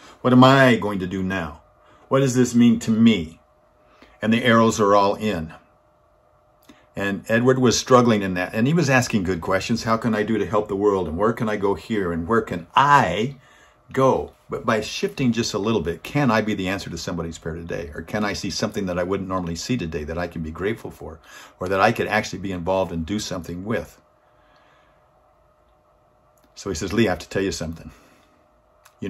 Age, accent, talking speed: 50-69, American, 215 wpm